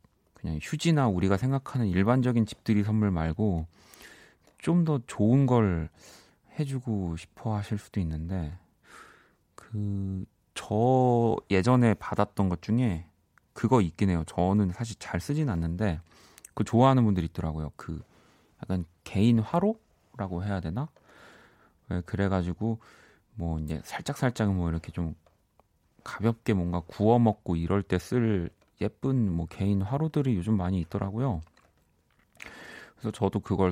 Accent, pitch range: native, 85-115 Hz